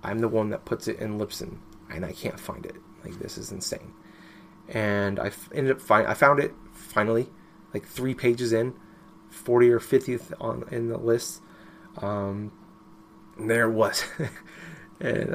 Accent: American